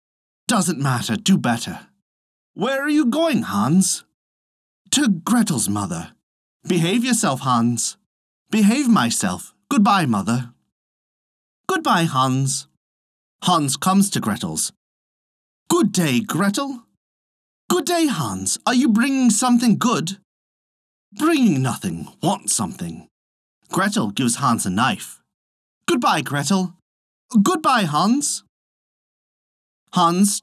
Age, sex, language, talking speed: 30-49, male, English, 100 wpm